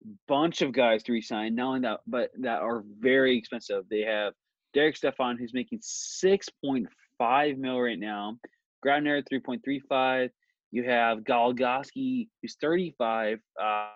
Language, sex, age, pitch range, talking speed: English, male, 20-39, 110-140 Hz, 130 wpm